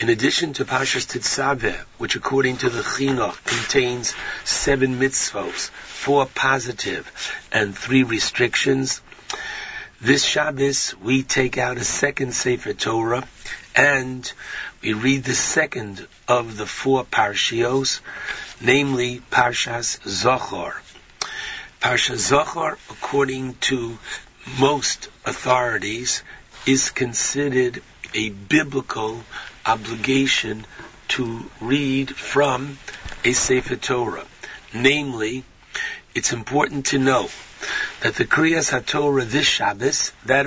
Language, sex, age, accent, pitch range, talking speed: English, male, 60-79, American, 120-140 Hz, 100 wpm